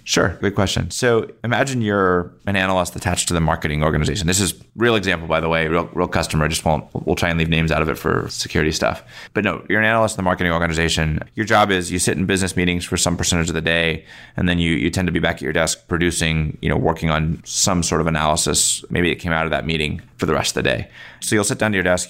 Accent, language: American, English